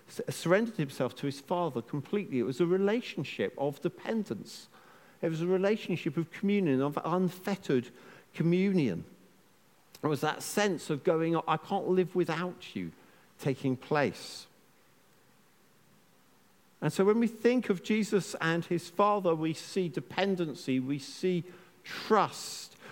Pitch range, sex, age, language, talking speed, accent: 145-195 Hz, male, 50-69, English, 130 wpm, British